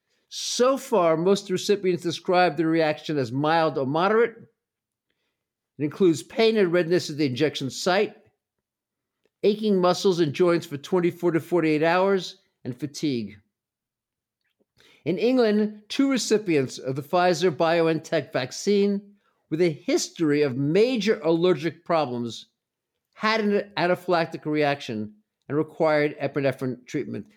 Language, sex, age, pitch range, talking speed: English, male, 50-69, 145-200 Hz, 120 wpm